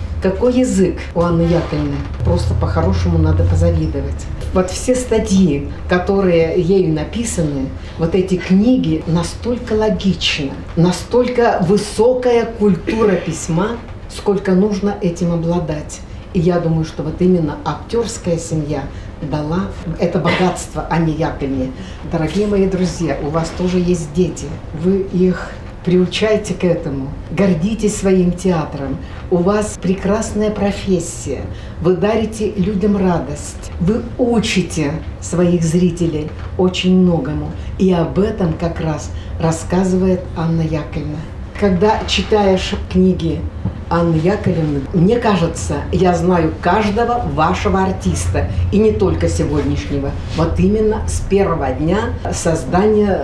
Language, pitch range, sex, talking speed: Russian, 160-205 Hz, female, 115 wpm